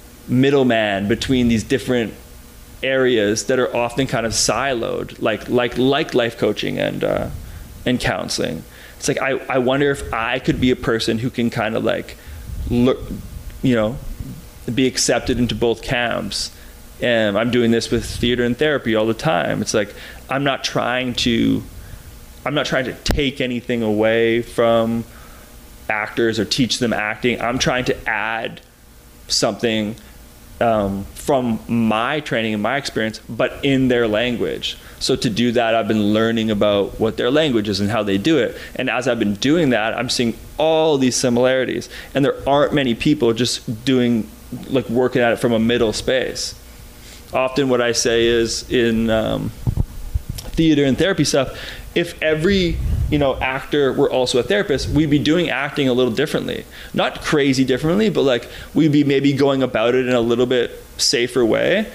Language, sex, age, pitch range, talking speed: English, male, 20-39, 115-135 Hz, 170 wpm